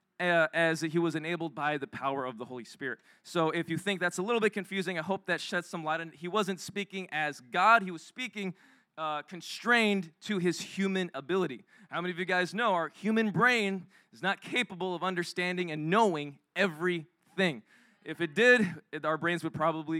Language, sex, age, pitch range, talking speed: English, male, 20-39, 155-190 Hz, 200 wpm